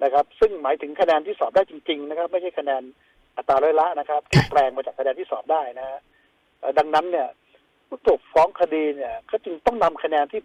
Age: 60-79